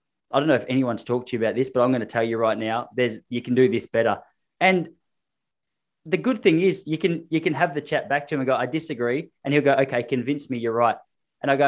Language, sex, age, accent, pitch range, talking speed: English, male, 20-39, Australian, 115-140 Hz, 275 wpm